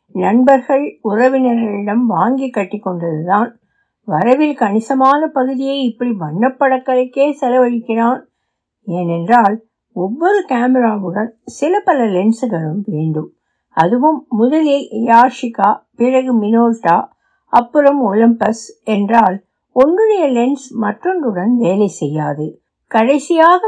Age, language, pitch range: 60-79, Tamil, 200-275 Hz